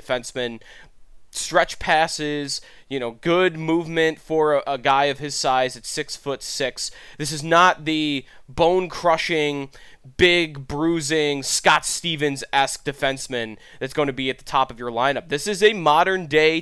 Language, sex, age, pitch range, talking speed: English, male, 20-39, 120-160 Hz, 160 wpm